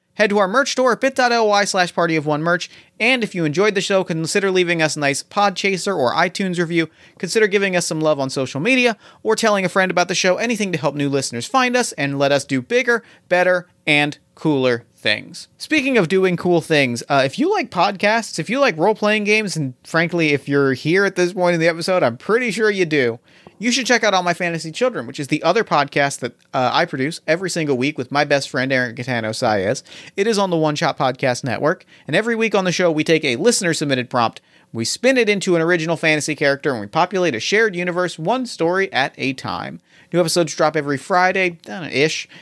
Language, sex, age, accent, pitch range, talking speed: English, male, 30-49, American, 145-200 Hz, 225 wpm